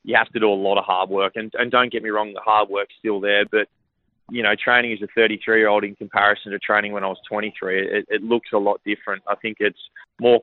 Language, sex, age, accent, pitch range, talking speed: English, male, 20-39, Australian, 100-110 Hz, 270 wpm